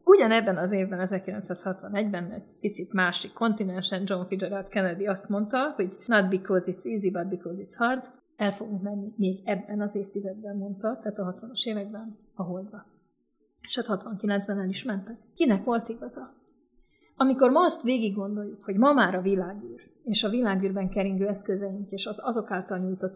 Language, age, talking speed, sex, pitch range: Hungarian, 30-49, 170 wpm, female, 185-215 Hz